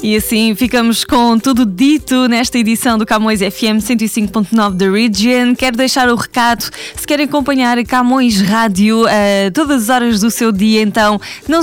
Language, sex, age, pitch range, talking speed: Portuguese, female, 20-39, 220-265 Hz, 175 wpm